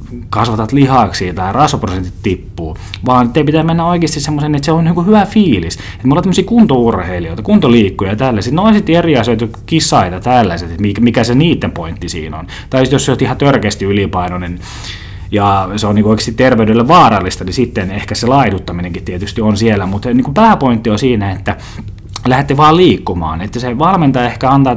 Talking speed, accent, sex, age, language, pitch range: 180 wpm, native, male, 20-39, Finnish, 100-135 Hz